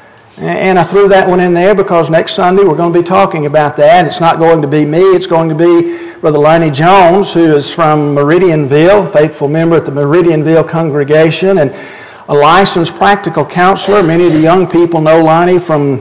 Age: 50-69